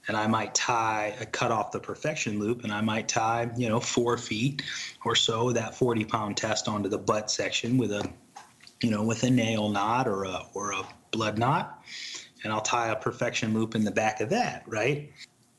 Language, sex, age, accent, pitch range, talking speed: English, male, 30-49, American, 110-125 Hz, 210 wpm